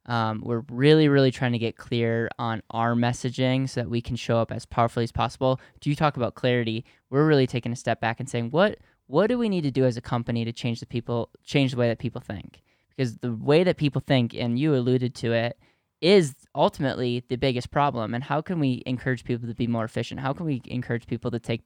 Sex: male